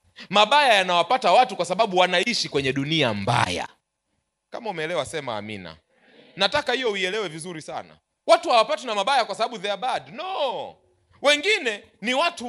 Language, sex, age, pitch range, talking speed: Swahili, male, 30-49, 180-290 Hz, 150 wpm